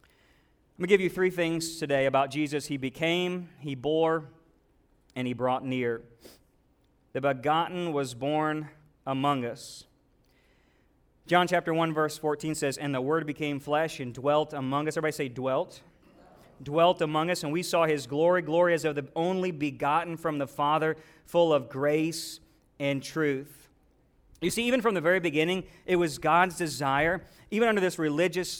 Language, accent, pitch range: English, American, 150-175 Hz